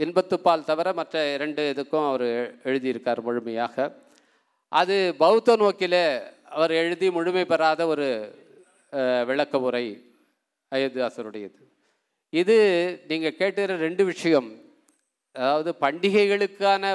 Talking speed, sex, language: 95 wpm, male, Tamil